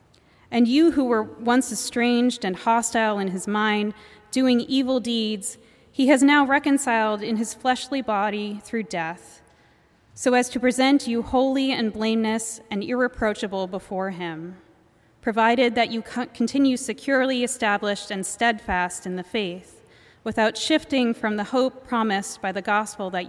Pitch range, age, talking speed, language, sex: 205-250 Hz, 30-49, 145 wpm, English, female